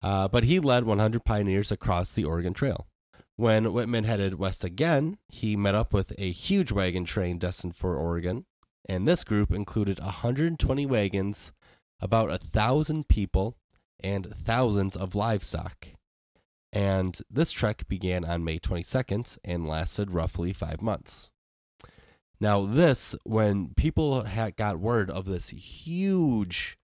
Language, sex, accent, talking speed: English, male, American, 135 wpm